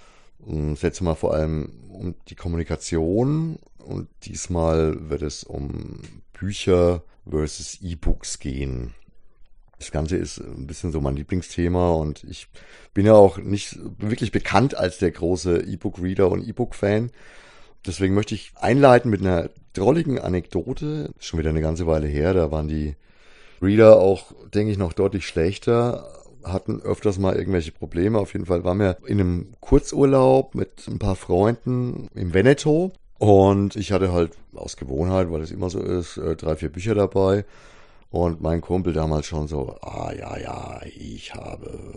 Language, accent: German, German